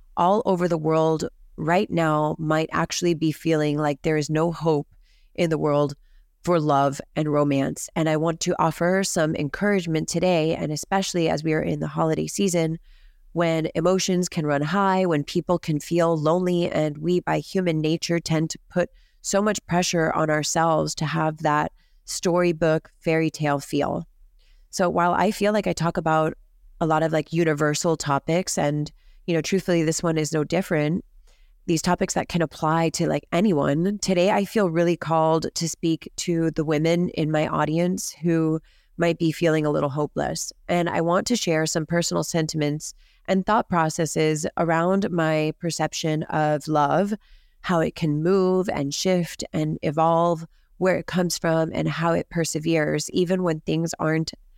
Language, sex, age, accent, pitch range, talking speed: English, female, 30-49, American, 155-175 Hz, 170 wpm